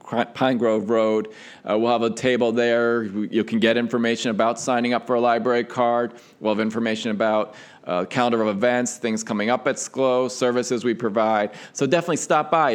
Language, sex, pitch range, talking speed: English, male, 110-135 Hz, 190 wpm